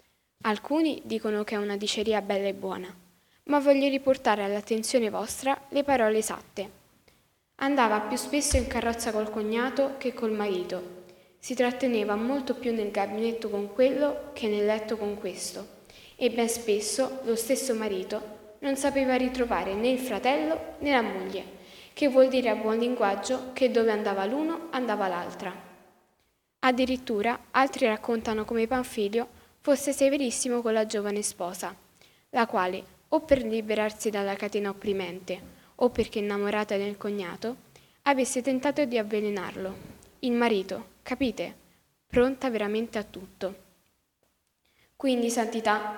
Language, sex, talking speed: Italian, female, 135 wpm